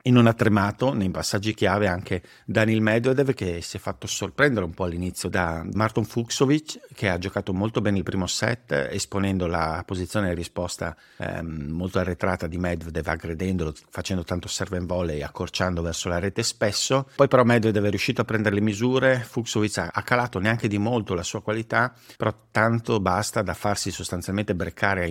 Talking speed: 185 wpm